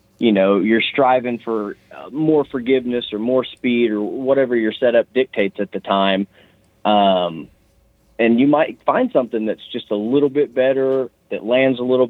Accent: American